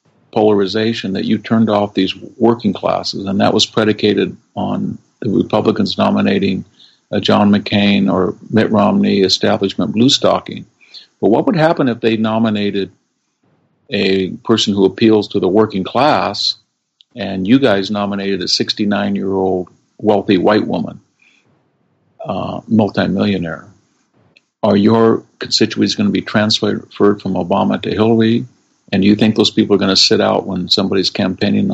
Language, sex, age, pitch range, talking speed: English, male, 50-69, 95-110 Hz, 145 wpm